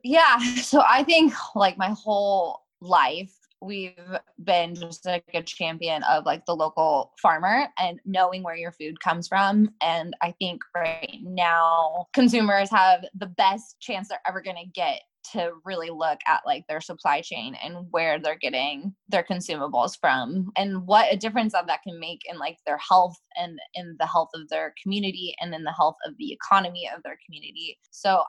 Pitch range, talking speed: 170-210 Hz, 180 wpm